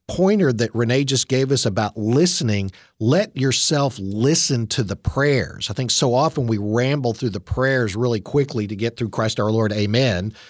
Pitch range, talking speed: 110-140 Hz, 185 wpm